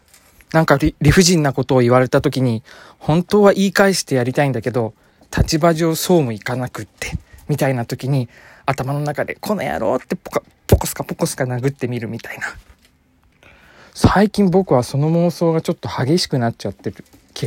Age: 20-39